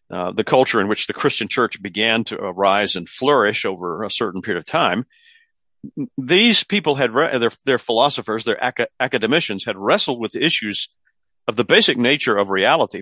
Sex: male